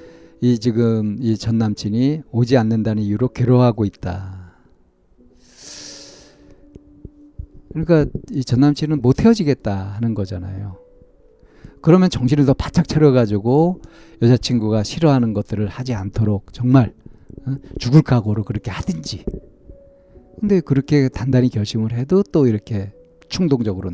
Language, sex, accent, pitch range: Korean, male, native, 95-140 Hz